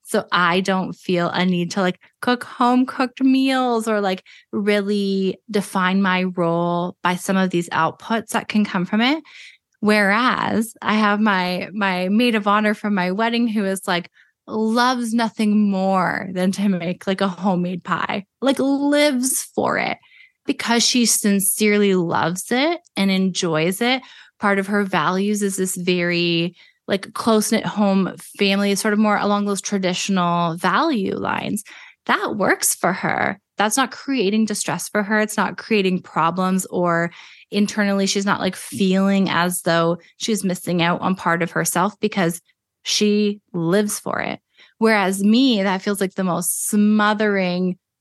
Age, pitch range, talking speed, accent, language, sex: 20-39, 185-220 Hz, 155 wpm, American, English, female